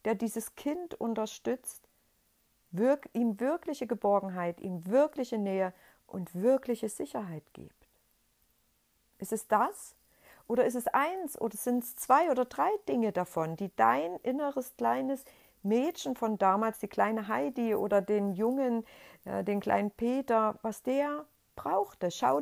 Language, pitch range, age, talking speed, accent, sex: German, 190-260 Hz, 50-69, 130 wpm, German, female